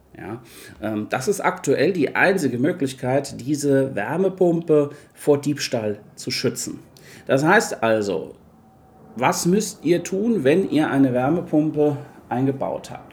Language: German